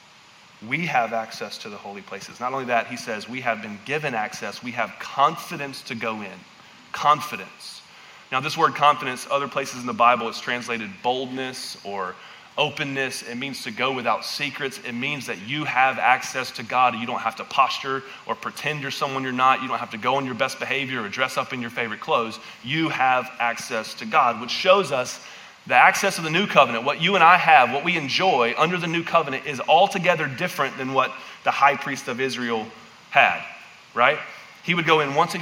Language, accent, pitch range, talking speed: English, American, 125-160 Hz, 210 wpm